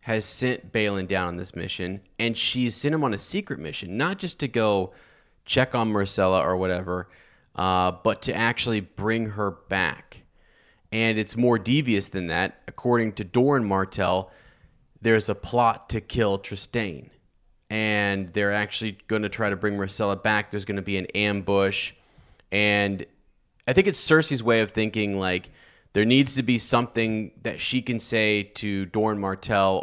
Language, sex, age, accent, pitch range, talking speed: English, male, 30-49, American, 95-115 Hz, 170 wpm